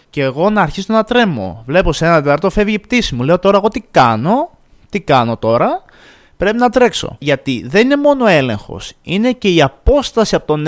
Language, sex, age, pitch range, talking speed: Greek, male, 20-39, 130-210 Hz, 210 wpm